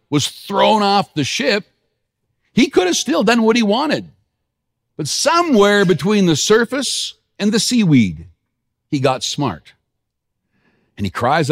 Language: English